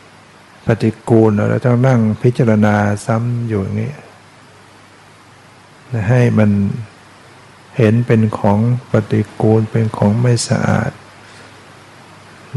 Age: 60-79